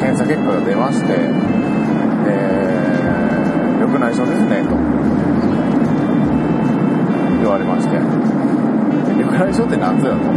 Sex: male